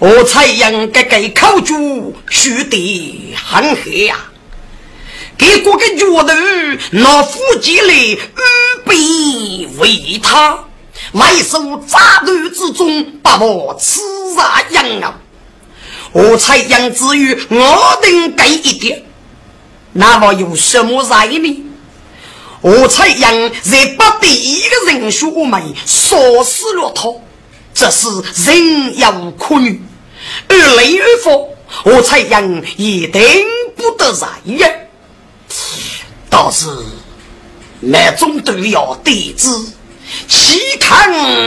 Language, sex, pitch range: Chinese, female, 235-380 Hz